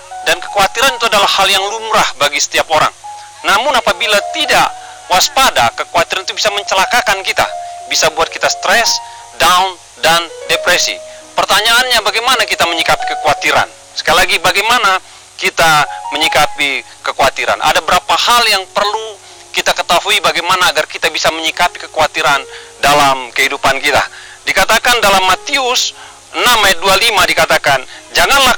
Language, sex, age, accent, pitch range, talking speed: Indonesian, male, 40-59, native, 180-250 Hz, 130 wpm